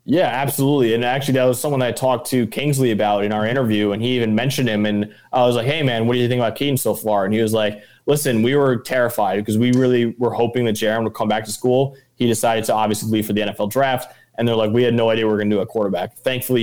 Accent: American